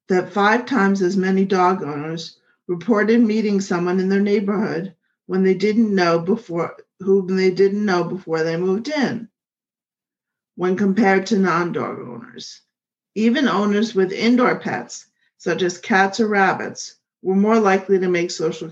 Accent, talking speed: American, 150 wpm